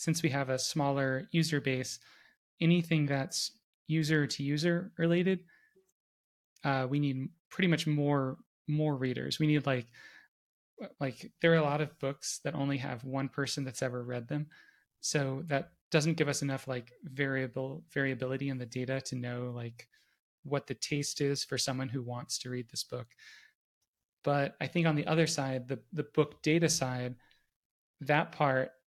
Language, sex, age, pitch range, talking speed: English, male, 20-39, 130-150 Hz, 170 wpm